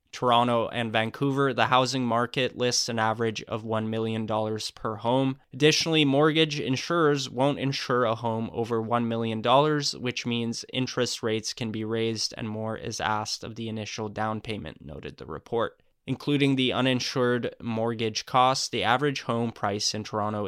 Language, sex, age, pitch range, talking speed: English, male, 10-29, 110-130 Hz, 160 wpm